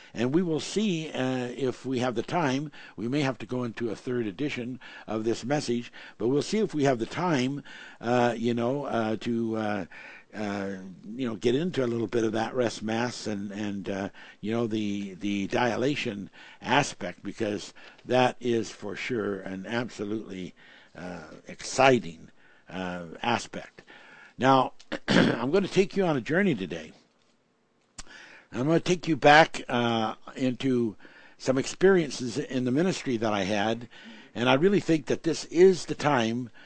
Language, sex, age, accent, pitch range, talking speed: English, male, 60-79, American, 115-135 Hz, 170 wpm